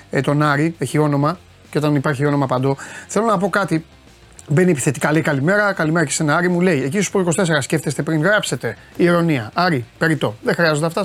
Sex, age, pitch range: male, 30-49, 140-200 Hz